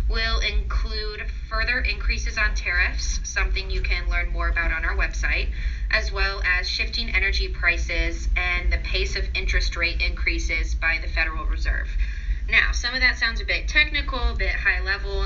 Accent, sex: American, female